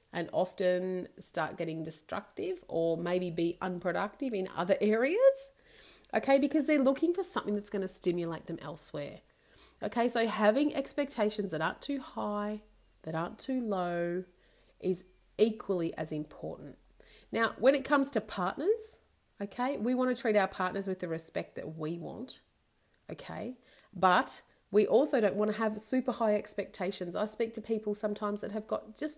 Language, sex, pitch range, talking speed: English, female, 180-245 Hz, 160 wpm